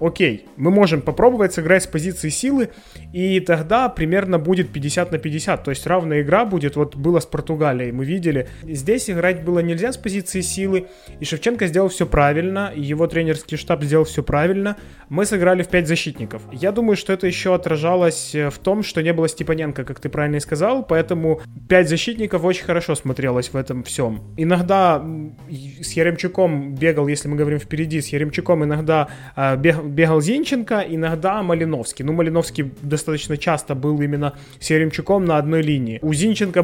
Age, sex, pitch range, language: 20-39, male, 150-180 Hz, Ukrainian